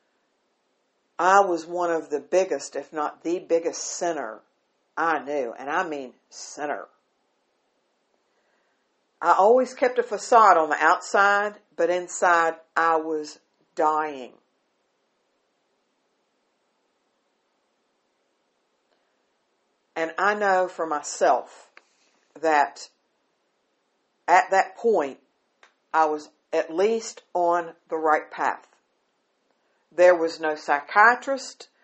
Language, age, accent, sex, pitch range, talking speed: English, 60-79, American, female, 155-195 Hz, 95 wpm